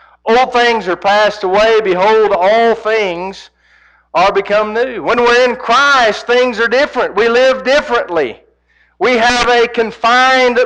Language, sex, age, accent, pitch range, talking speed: English, male, 50-69, American, 205-260 Hz, 140 wpm